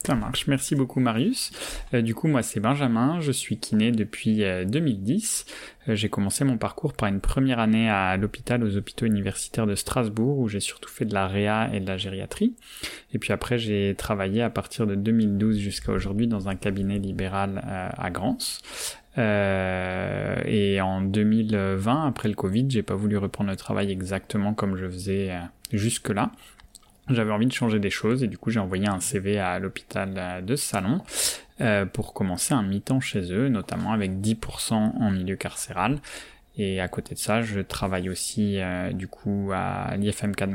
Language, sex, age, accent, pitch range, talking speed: French, male, 20-39, French, 95-115 Hz, 185 wpm